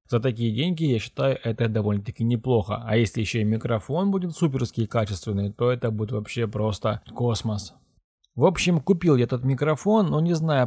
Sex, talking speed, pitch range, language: male, 175 wpm, 115-145 Hz, Russian